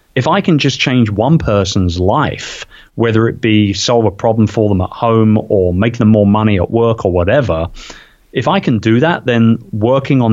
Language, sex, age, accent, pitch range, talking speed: English, male, 30-49, British, 100-125 Hz, 205 wpm